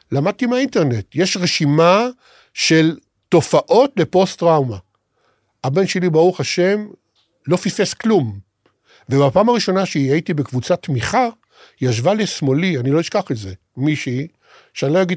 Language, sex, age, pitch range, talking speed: Hebrew, male, 50-69, 115-175 Hz, 125 wpm